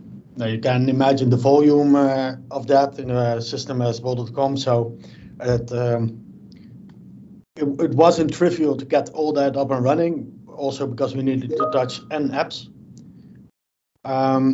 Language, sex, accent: English, male, Dutch